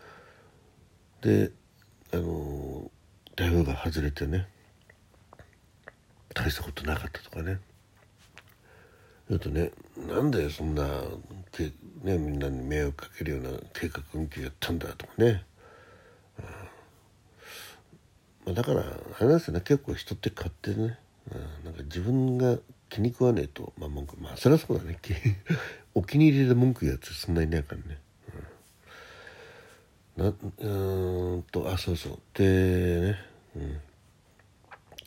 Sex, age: male, 60-79